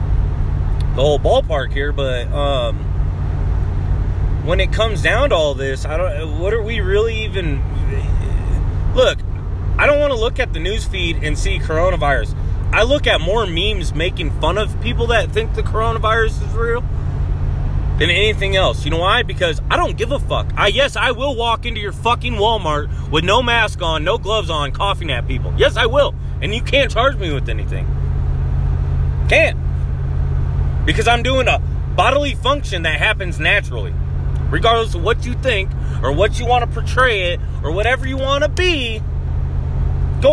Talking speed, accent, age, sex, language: 175 wpm, American, 30-49, male, English